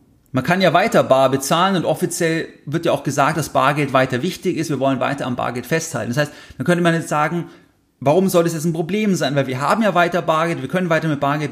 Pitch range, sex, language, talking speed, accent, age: 135-170 Hz, male, German, 250 wpm, German, 30-49